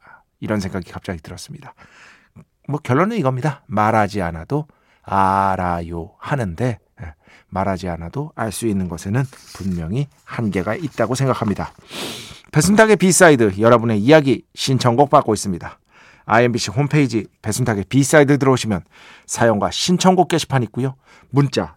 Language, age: Korean, 40-59